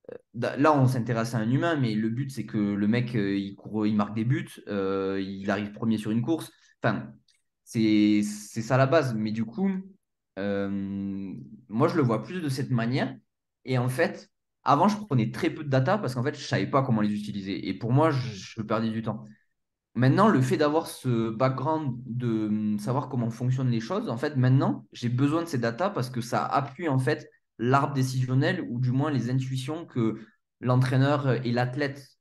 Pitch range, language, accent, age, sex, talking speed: 105-135 Hz, French, French, 20-39, male, 200 wpm